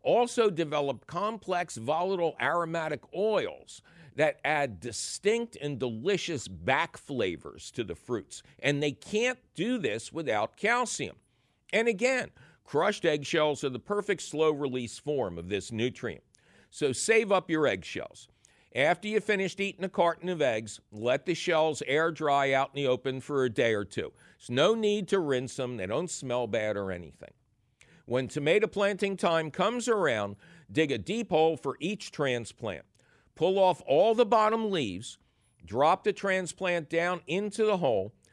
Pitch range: 140-200 Hz